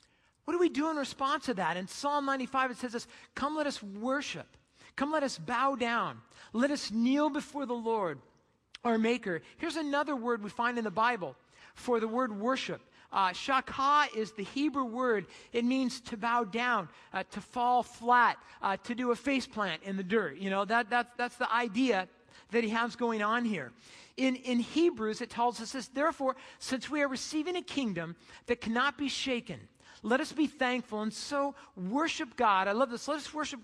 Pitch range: 225-280 Hz